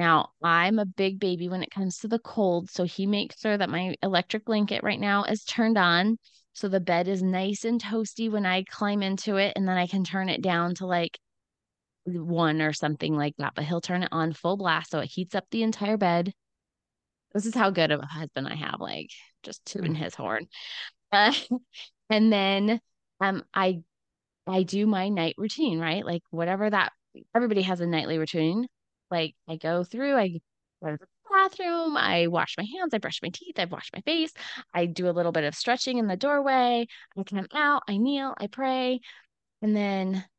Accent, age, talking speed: American, 20-39, 205 wpm